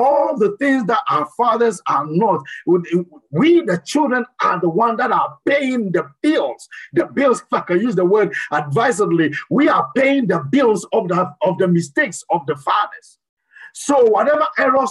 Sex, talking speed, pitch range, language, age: male, 175 wpm, 180-270 Hz, English, 50-69